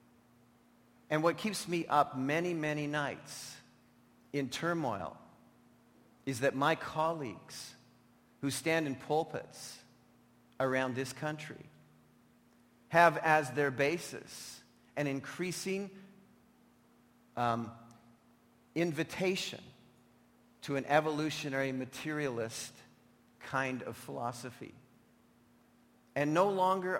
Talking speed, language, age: 85 wpm, English, 50-69